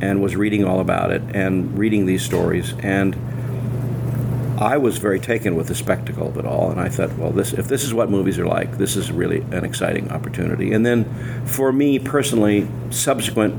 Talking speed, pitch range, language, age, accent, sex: 200 wpm, 95-120 Hz, English, 50-69, American, male